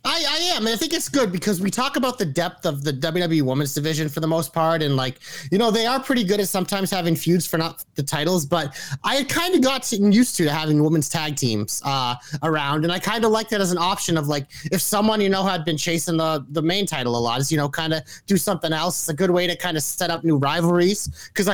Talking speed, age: 265 wpm, 30-49